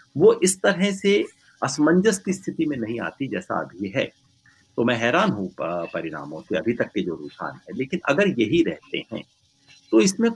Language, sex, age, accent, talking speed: Hindi, male, 60-79, native, 135 wpm